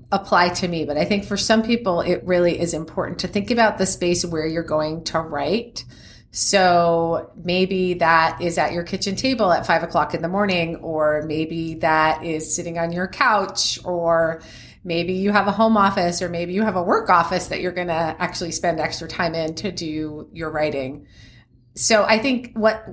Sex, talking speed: female, 200 wpm